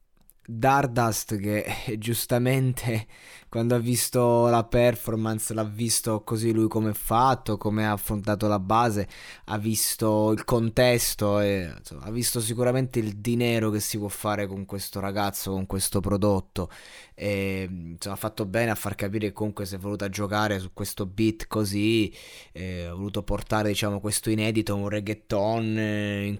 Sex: male